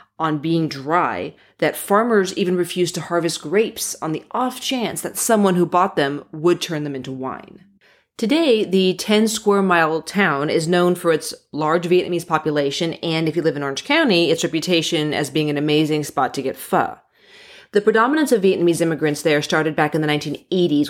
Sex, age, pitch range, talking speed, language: female, 30-49, 155-195 Hz, 180 wpm, English